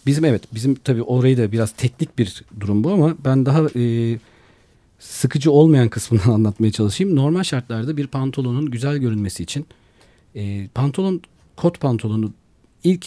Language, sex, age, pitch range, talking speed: Turkish, male, 40-59, 110-150 Hz, 145 wpm